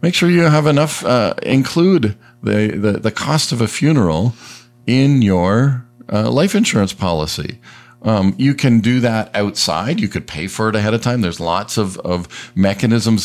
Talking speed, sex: 175 wpm, male